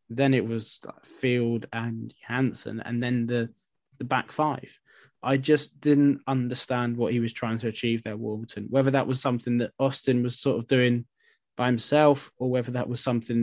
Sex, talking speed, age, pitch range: male, 185 wpm, 20-39, 120-140 Hz